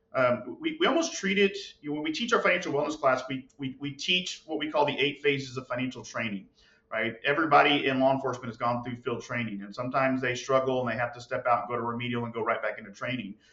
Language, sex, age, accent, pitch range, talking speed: English, male, 40-59, American, 125-150 Hz, 255 wpm